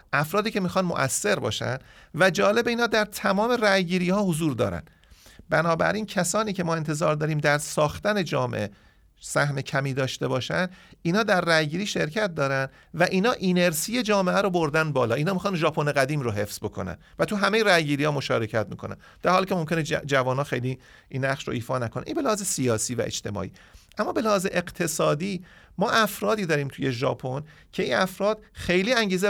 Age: 40-59